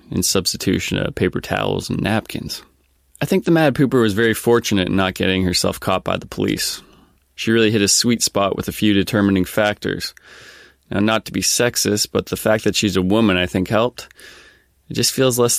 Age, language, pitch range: 20-39, English, 90-110 Hz